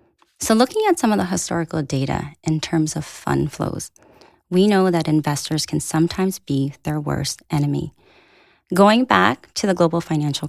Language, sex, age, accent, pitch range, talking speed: English, female, 30-49, American, 145-205 Hz, 165 wpm